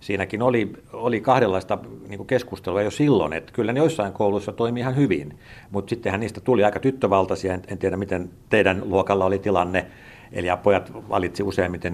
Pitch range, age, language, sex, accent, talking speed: 90-105 Hz, 60-79, Finnish, male, native, 160 wpm